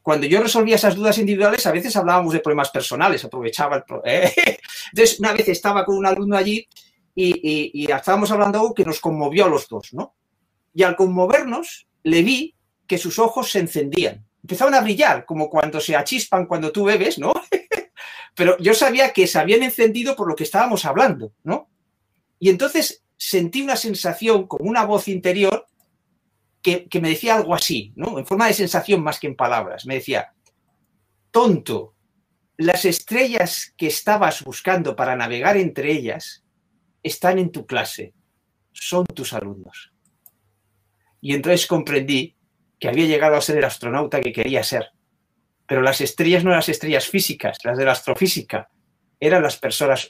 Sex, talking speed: male, 170 wpm